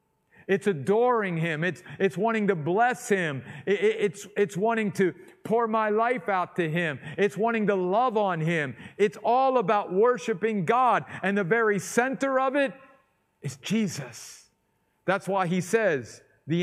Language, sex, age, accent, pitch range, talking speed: English, male, 50-69, American, 175-230 Hz, 160 wpm